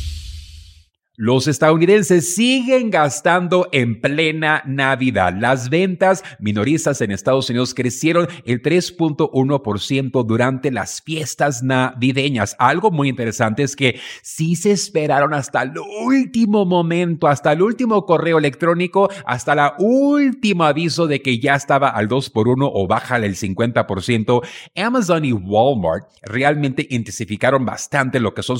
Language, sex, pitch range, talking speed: Spanish, male, 120-160 Hz, 135 wpm